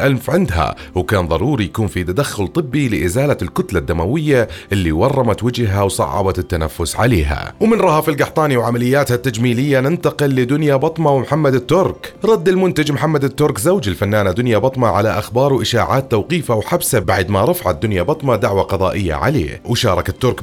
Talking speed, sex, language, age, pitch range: 145 wpm, male, Arabic, 30-49, 100-155 Hz